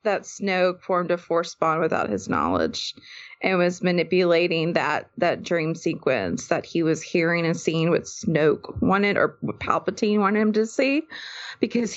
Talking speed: 160 wpm